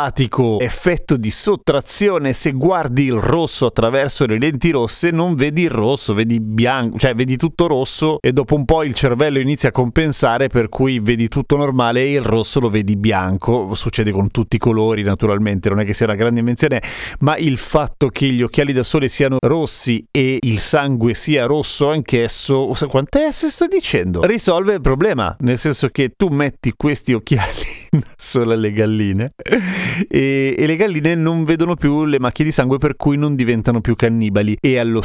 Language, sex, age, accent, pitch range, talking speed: Italian, male, 40-59, native, 115-150 Hz, 185 wpm